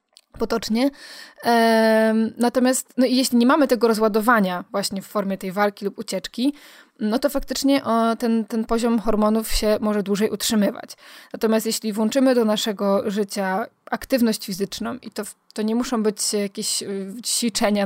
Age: 20-39